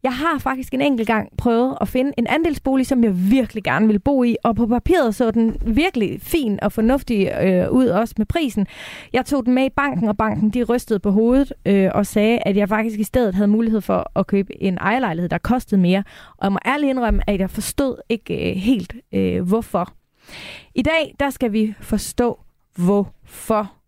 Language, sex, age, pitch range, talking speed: Danish, female, 30-49, 195-245 Hz, 195 wpm